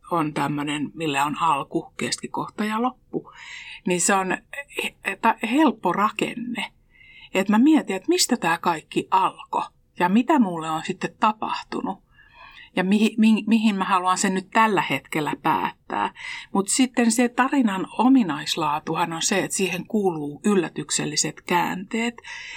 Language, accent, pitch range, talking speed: Finnish, native, 175-240 Hz, 135 wpm